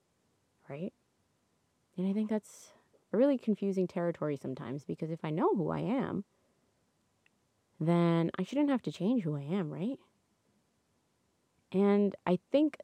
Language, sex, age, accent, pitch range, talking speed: English, female, 20-39, American, 160-215 Hz, 140 wpm